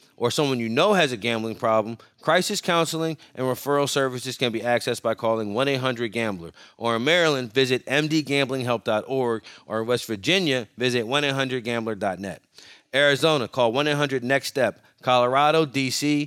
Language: English